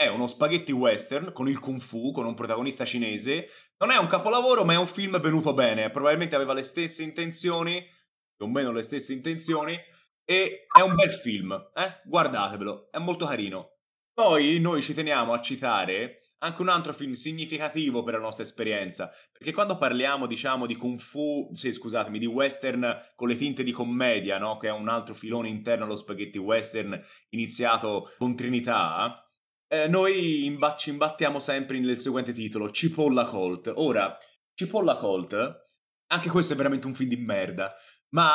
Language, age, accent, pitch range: Italian, 20-39, native, 120-165 Hz